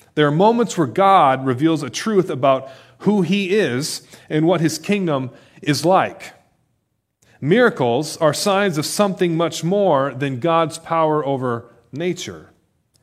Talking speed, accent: 140 wpm, American